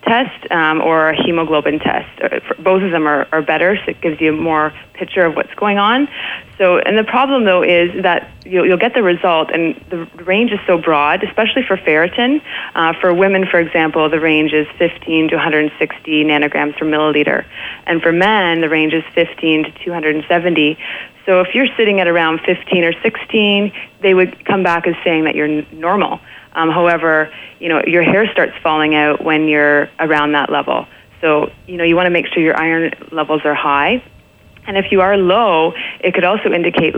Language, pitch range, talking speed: English, 155-185 Hz, 195 wpm